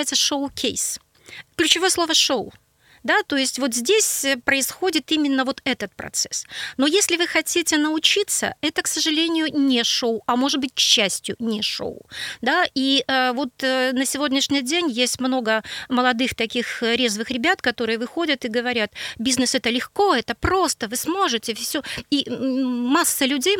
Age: 30-49